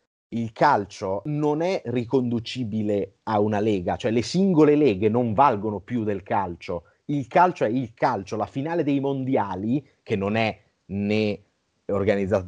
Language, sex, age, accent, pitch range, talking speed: Italian, male, 30-49, native, 105-130 Hz, 150 wpm